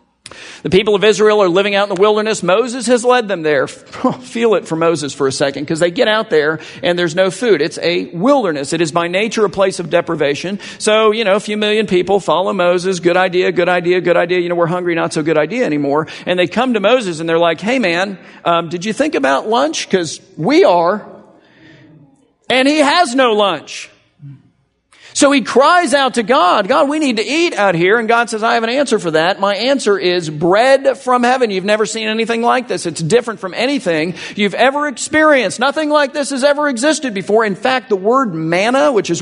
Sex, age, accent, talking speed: male, 50-69, American, 220 wpm